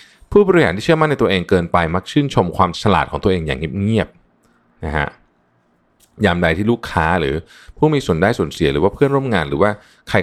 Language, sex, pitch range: Thai, male, 90-125 Hz